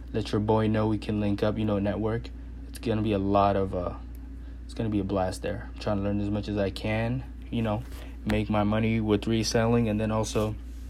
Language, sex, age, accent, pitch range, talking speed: English, male, 20-39, American, 70-105 Hz, 235 wpm